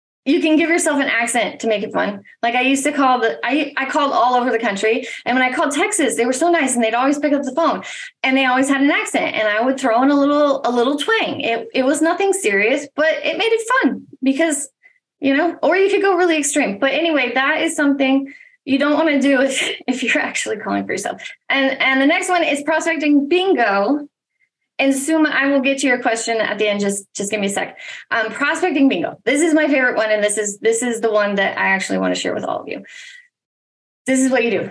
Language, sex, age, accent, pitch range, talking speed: English, female, 20-39, American, 240-310 Hz, 250 wpm